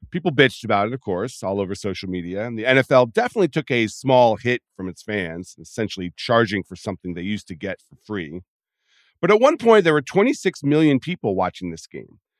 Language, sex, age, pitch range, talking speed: English, male, 40-59, 95-150 Hz, 210 wpm